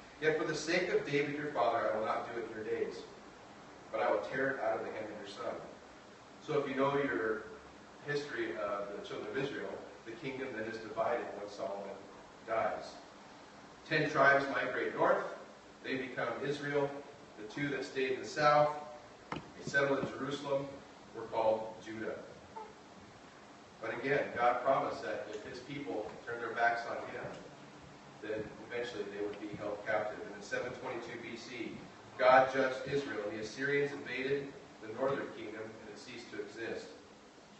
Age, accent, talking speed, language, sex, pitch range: 40-59, American, 170 wpm, English, male, 110-145 Hz